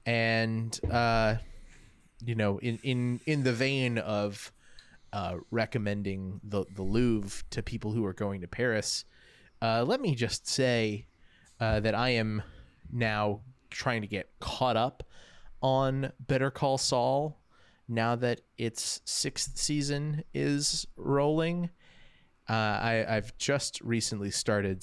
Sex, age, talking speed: male, 20-39, 130 wpm